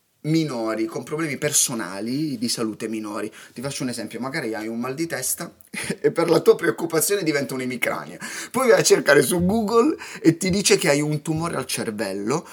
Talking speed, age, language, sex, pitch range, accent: 185 wpm, 30-49, Italian, male, 130-215 Hz, native